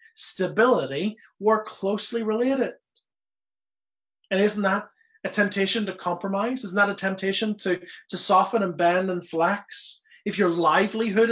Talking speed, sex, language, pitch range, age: 135 wpm, male, English, 150-205 Hz, 30-49